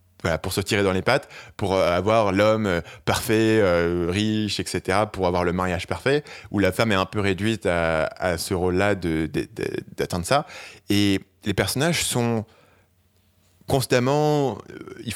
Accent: French